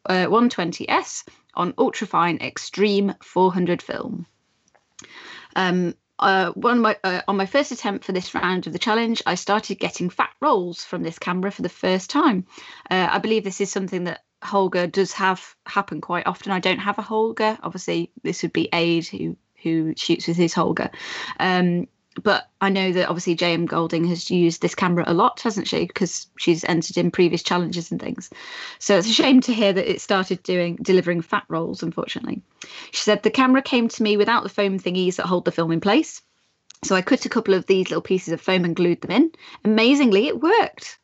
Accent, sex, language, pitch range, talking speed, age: British, female, English, 175-220 Hz, 200 wpm, 20-39